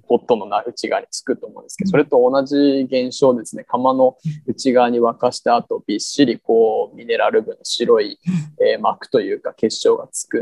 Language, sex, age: Japanese, male, 20-39